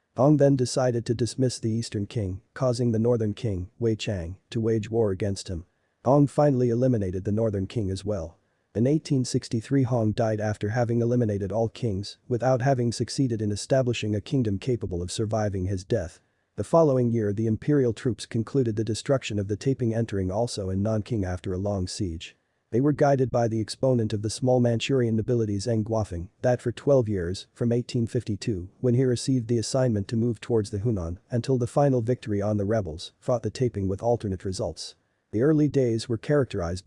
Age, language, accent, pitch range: 40-59, English, American, 105-125 Hz